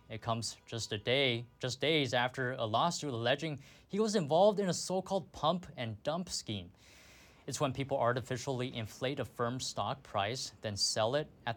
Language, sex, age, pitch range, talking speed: English, male, 20-39, 120-165 Hz, 175 wpm